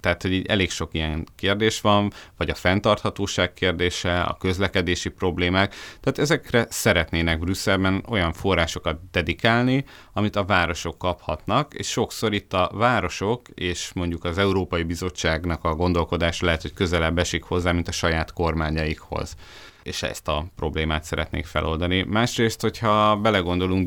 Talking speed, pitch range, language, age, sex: 140 wpm, 80-95 Hz, Hungarian, 30-49, male